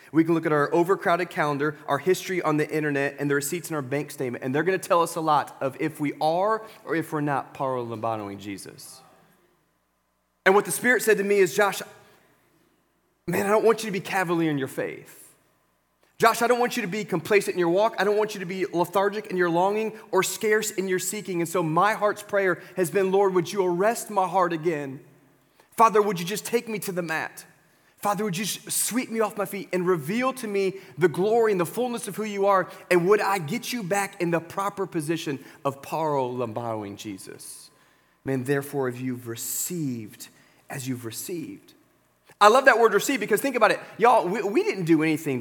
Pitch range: 155-210 Hz